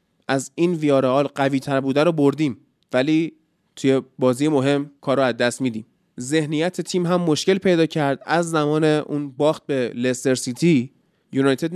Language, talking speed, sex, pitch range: Persian, 165 wpm, male, 130-165 Hz